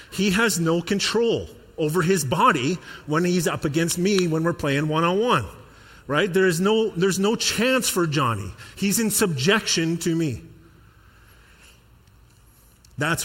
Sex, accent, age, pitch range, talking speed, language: male, American, 40-59, 110-165 Hz, 140 wpm, English